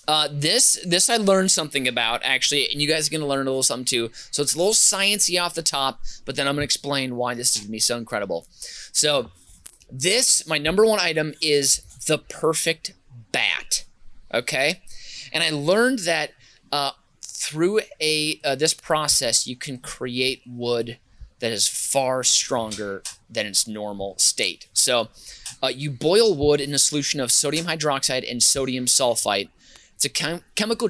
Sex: male